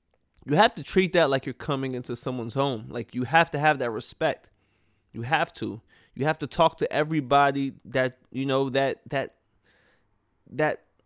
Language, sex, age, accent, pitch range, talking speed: English, male, 20-39, American, 125-165 Hz, 180 wpm